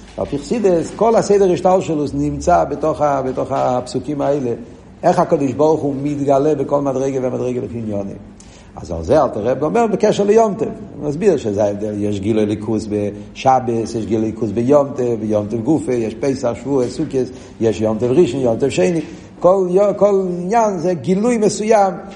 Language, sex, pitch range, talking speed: Hebrew, male, 130-185 Hz, 160 wpm